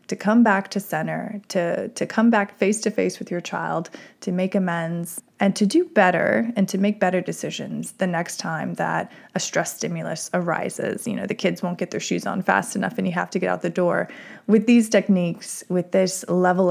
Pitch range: 175-210 Hz